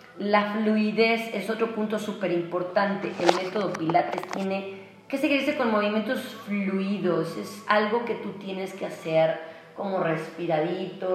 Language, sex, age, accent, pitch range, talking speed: Spanish, female, 30-49, Mexican, 170-215 Hz, 135 wpm